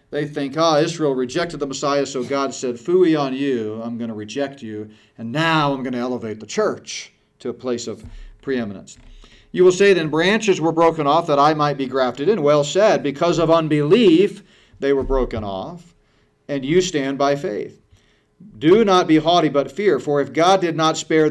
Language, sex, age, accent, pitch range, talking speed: English, male, 40-59, American, 130-175 Hz, 200 wpm